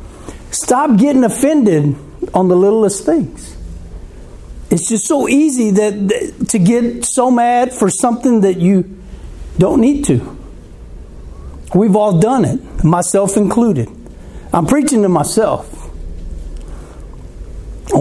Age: 60-79